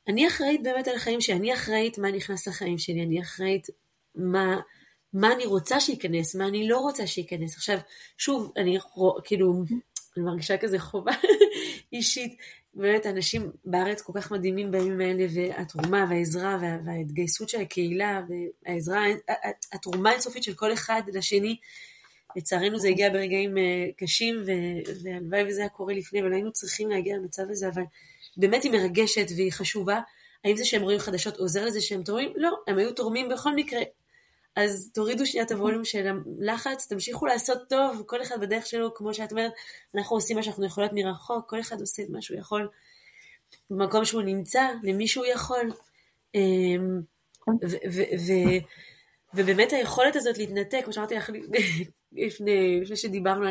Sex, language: female, Hebrew